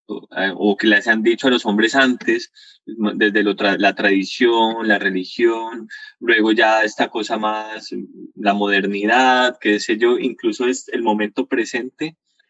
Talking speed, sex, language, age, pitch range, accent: 150 wpm, male, Spanish, 20-39, 110-145 Hz, Colombian